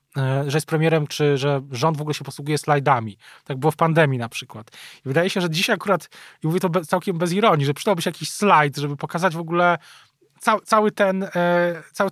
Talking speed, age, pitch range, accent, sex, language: 215 wpm, 20-39, 140-170 Hz, native, male, Polish